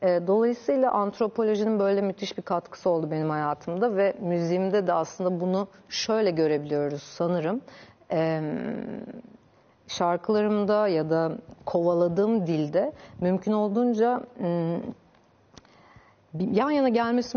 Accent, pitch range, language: native, 170-210 Hz, Turkish